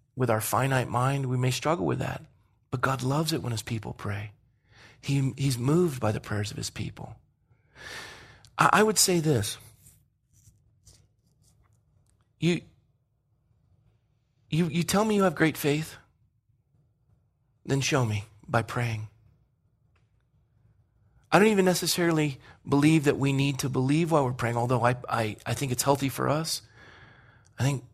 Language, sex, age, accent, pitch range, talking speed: English, male, 40-59, American, 115-155 Hz, 150 wpm